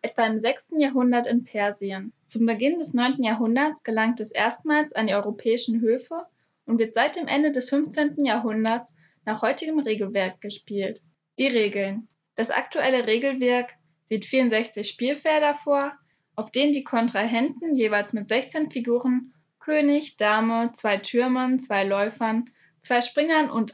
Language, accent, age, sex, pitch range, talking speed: German, German, 10-29, female, 210-265 Hz, 140 wpm